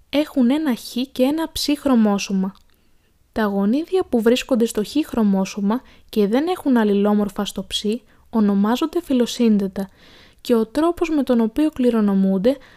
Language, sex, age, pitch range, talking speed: Greek, female, 20-39, 210-270 Hz, 135 wpm